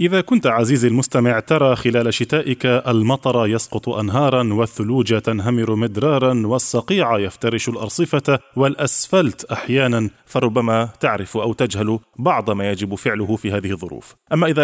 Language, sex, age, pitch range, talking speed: Arabic, male, 20-39, 110-135 Hz, 125 wpm